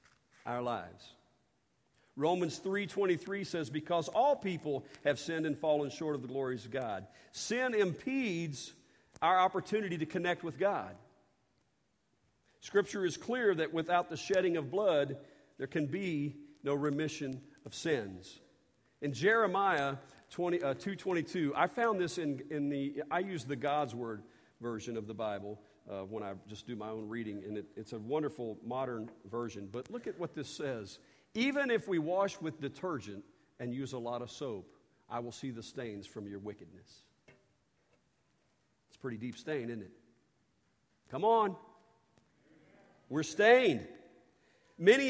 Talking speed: 150 wpm